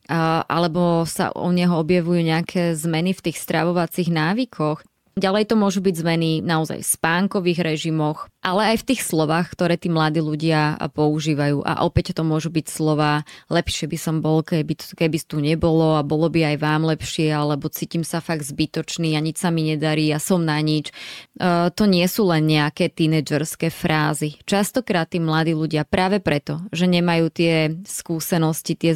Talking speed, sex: 170 wpm, female